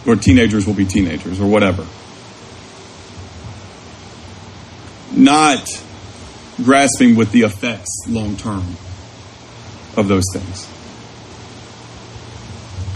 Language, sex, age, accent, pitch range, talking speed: English, male, 40-59, American, 95-140 Hz, 80 wpm